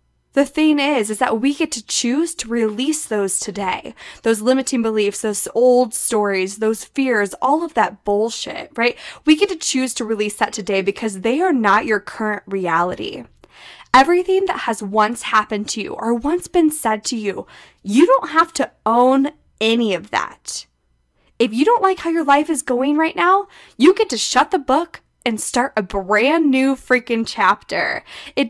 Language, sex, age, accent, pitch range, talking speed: English, female, 10-29, American, 220-310 Hz, 185 wpm